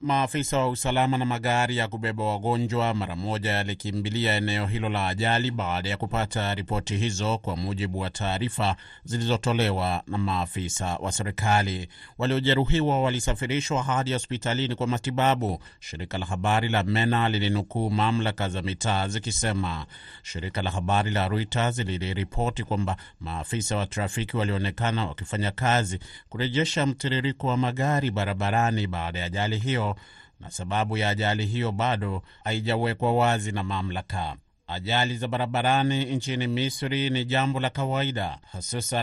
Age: 30-49